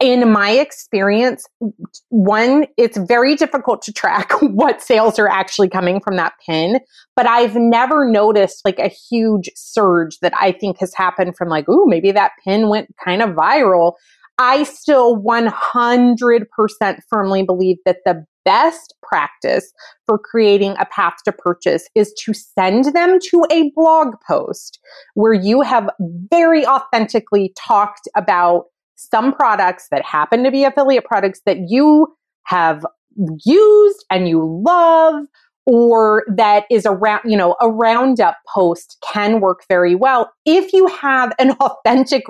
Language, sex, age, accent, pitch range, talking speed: English, female, 30-49, American, 190-265 Hz, 145 wpm